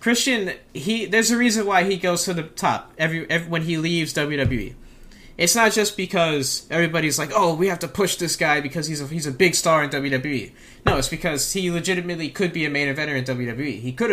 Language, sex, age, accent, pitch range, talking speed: English, male, 20-39, American, 130-170 Hz, 225 wpm